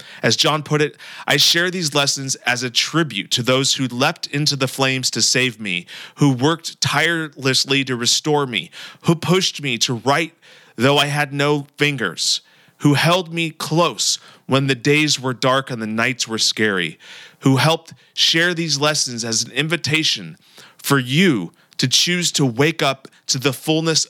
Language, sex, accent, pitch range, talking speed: English, male, American, 125-150 Hz, 170 wpm